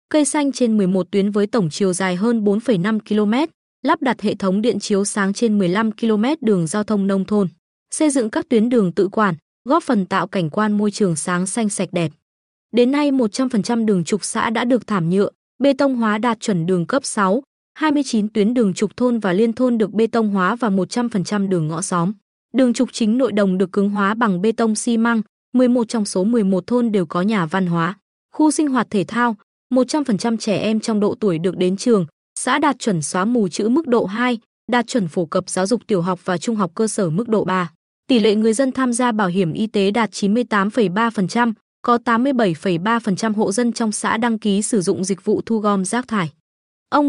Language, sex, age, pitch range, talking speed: Vietnamese, female, 20-39, 195-240 Hz, 220 wpm